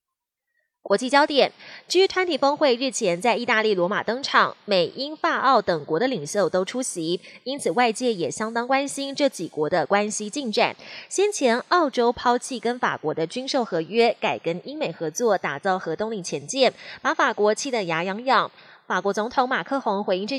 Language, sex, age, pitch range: Chinese, female, 20-39, 195-265 Hz